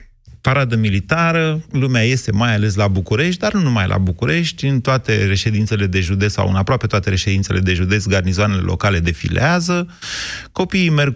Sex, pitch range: male, 95-135 Hz